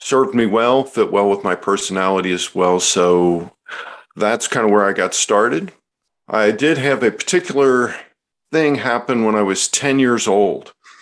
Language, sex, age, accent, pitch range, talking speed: English, male, 50-69, American, 95-120 Hz, 170 wpm